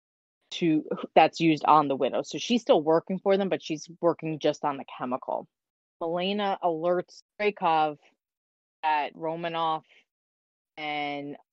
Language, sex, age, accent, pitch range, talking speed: English, female, 20-39, American, 150-175 Hz, 130 wpm